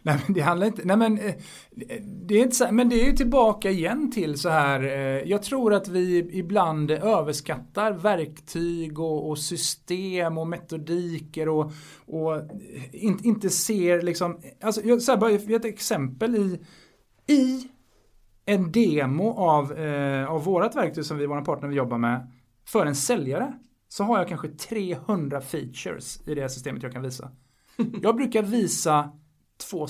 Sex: male